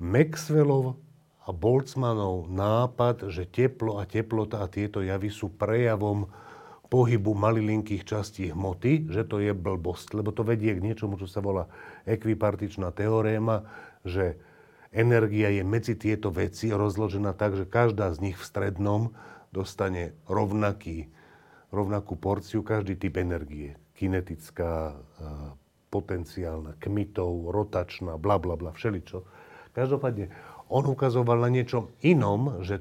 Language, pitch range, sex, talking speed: Slovak, 90-115 Hz, male, 125 wpm